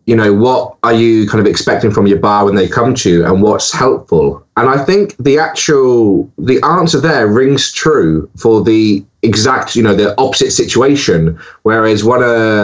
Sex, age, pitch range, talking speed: male, 20-39, 105-145 Hz, 190 wpm